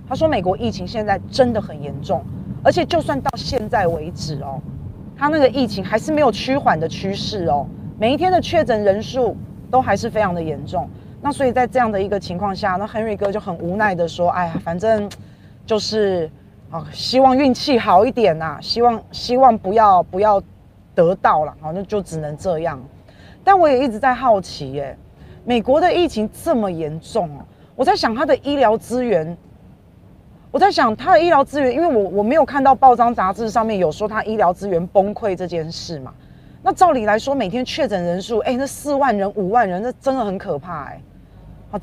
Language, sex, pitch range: Chinese, female, 185-255 Hz